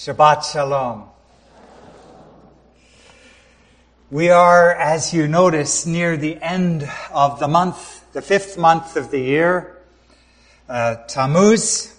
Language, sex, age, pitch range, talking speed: English, male, 60-79, 140-180 Hz, 105 wpm